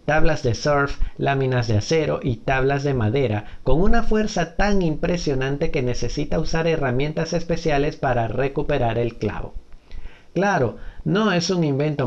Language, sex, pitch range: Spanish, male, 130-170 Hz